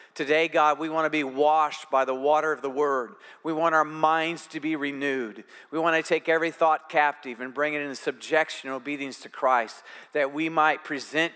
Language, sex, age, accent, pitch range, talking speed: English, male, 50-69, American, 125-155 Hz, 210 wpm